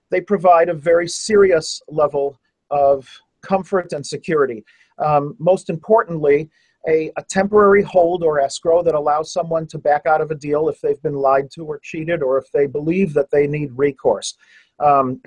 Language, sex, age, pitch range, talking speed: English, male, 40-59, 145-200 Hz, 175 wpm